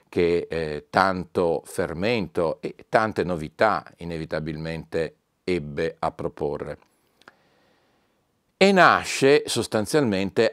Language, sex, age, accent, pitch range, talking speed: Italian, male, 40-59, native, 80-95 Hz, 80 wpm